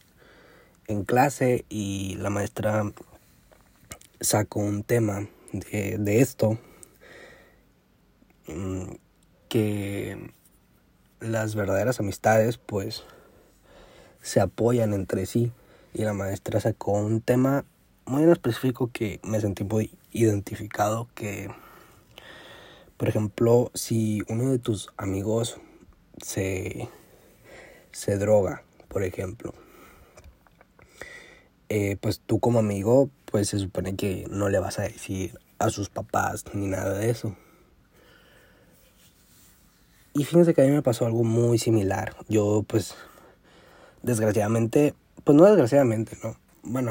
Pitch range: 100-120 Hz